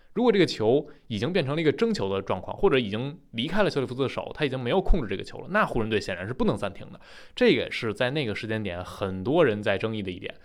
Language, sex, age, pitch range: Chinese, male, 20-39, 100-150 Hz